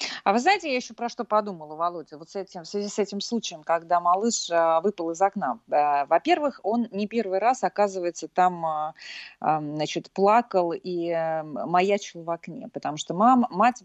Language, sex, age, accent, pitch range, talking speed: Russian, female, 30-49, native, 170-240 Hz, 170 wpm